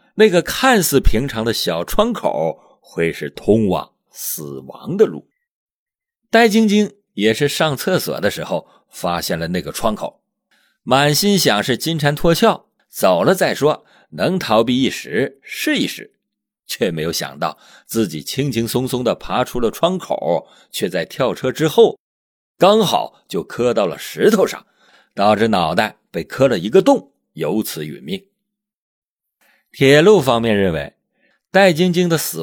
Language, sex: Chinese, male